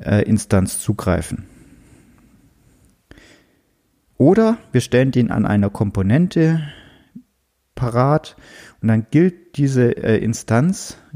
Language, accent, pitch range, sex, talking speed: German, German, 105-130 Hz, male, 80 wpm